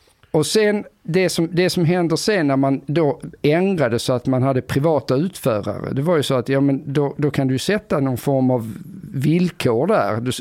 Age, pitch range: 50-69, 115-160 Hz